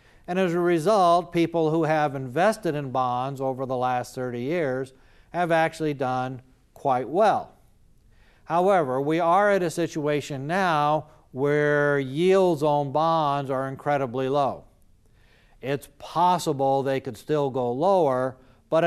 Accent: American